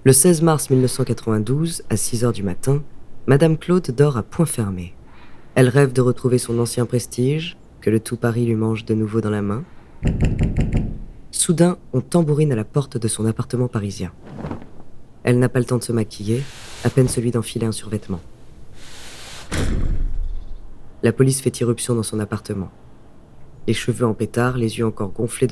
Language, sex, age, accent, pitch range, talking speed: French, female, 20-39, French, 110-140 Hz, 170 wpm